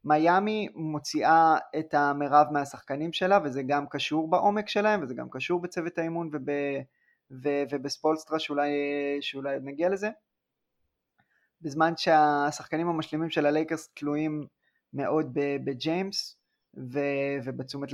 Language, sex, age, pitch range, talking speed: Hebrew, male, 20-39, 140-160 Hz, 105 wpm